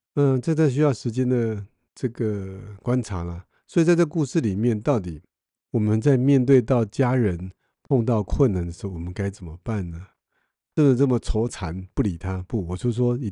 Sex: male